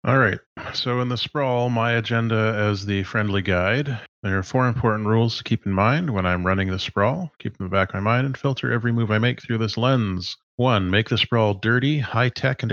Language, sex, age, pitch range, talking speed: English, male, 30-49, 100-120 Hz, 235 wpm